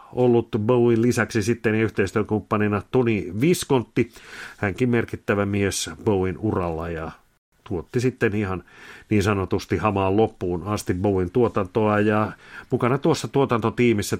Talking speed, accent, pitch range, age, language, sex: 115 wpm, native, 95-120 Hz, 50-69, Finnish, male